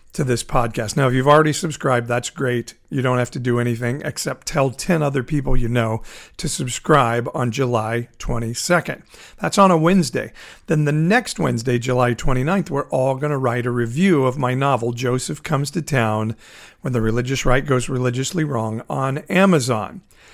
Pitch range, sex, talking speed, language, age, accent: 120-145 Hz, male, 180 wpm, English, 50-69, American